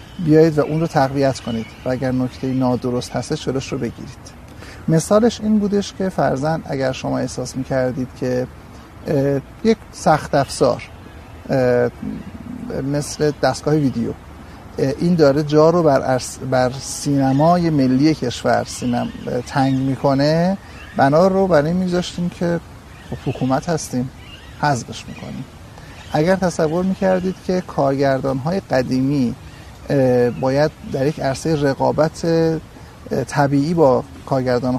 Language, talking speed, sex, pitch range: Persian, 110 wpm, male, 125-155 Hz